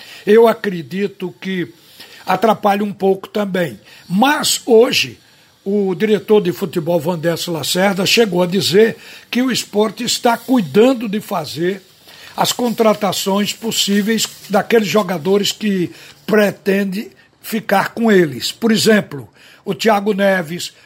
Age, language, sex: 60-79, Portuguese, male